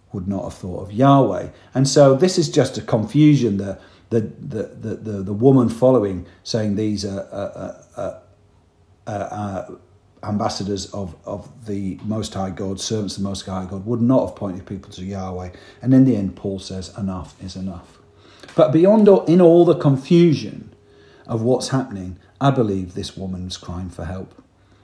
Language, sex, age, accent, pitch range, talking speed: English, male, 50-69, British, 95-130 Hz, 175 wpm